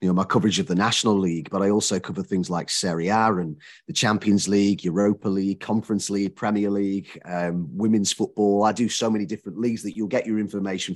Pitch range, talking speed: 95-110 Hz, 220 wpm